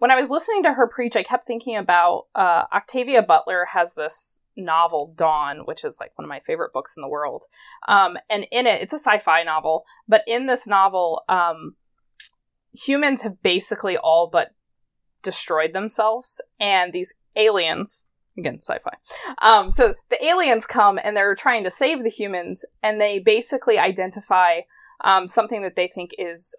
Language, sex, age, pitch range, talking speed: English, female, 20-39, 180-245 Hz, 170 wpm